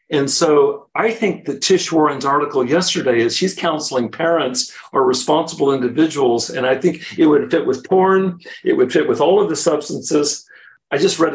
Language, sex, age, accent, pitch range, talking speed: English, male, 50-69, American, 145-220 Hz, 185 wpm